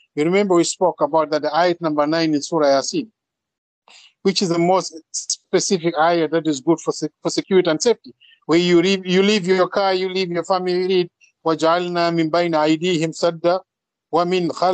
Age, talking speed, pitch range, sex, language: 50-69, 165 wpm, 165-205 Hz, male, English